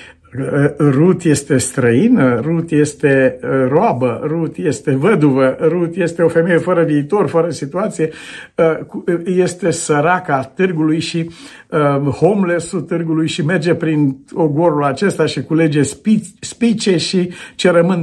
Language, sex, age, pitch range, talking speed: Romanian, male, 60-79, 135-180 Hz, 115 wpm